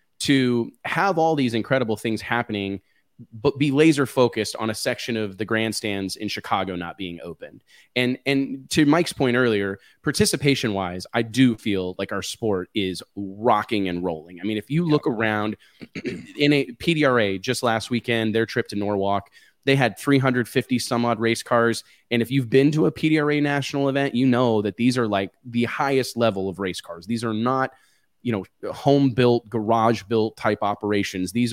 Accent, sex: American, male